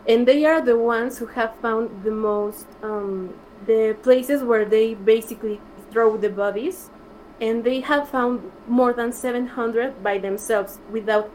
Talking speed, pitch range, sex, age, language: 155 wpm, 210-240 Hz, female, 20-39, English